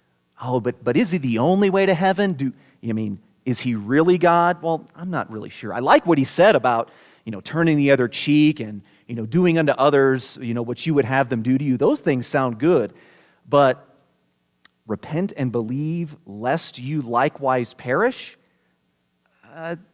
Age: 30-49